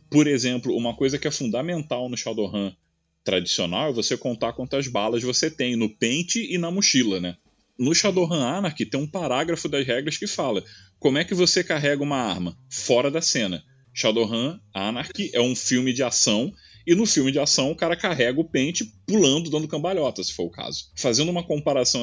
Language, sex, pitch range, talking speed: Portuguese, male, 110-165 Hz, 190 wpm